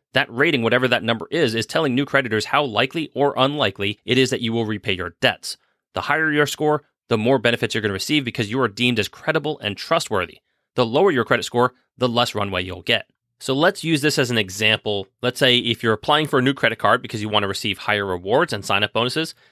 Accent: American